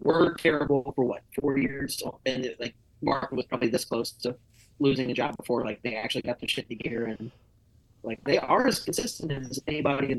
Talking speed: 205 wpm